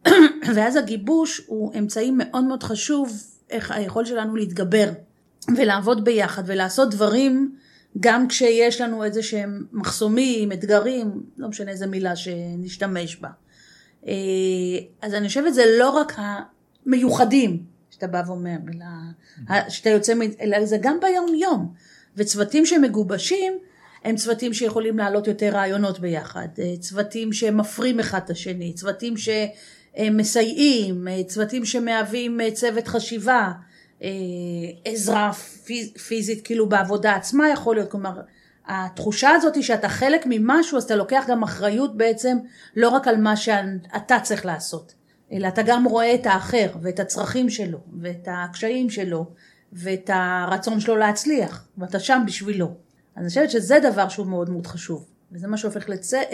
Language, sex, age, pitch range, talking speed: Hebrew, female, 30-49, 190-240 Hz, 130 wpm